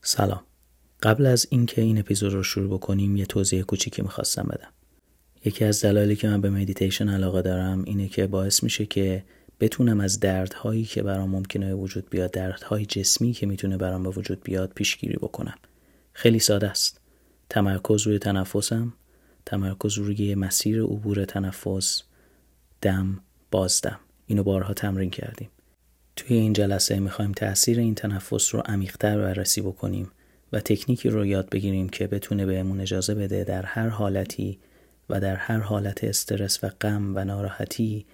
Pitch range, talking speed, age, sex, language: 95-105 Hz, 155 wpm, 30-49, male, Persian